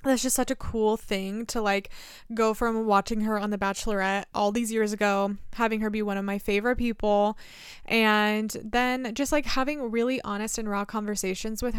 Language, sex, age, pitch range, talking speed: English, female, 20-39, 205-245 Hz, 195 wpm